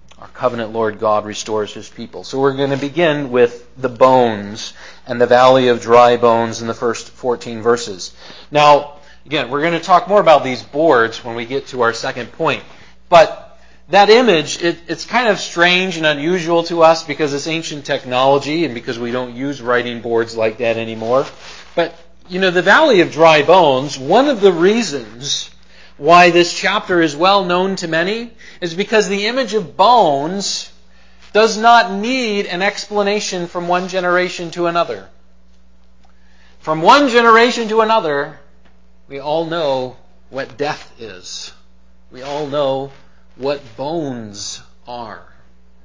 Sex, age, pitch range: male, 40-59, 115-175 Hz